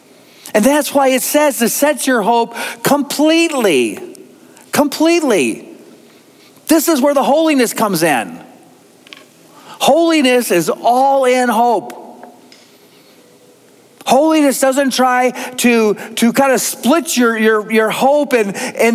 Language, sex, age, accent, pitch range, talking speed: English, male, 40-59, American, 225-280 Hz, 115 wpm